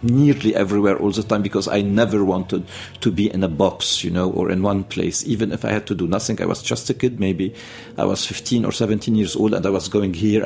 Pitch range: 95-115 Hz